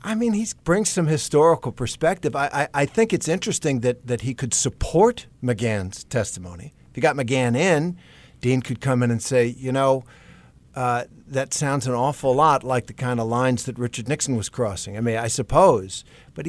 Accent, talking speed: American, 195 wpm